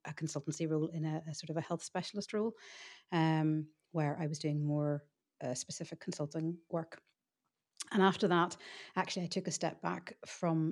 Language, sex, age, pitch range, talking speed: English, female, 40-59, 155-175 Hz, 180 wpm